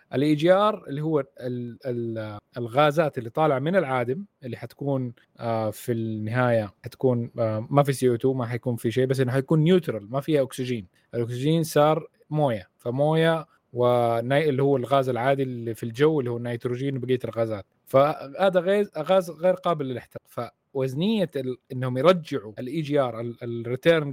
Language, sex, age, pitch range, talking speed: Arabic, male, 20-39, 120-155 Hz, 155 wpm